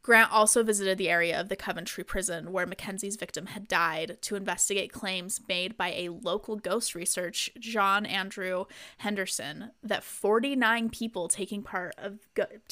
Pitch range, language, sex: 185-215 Hz, English, female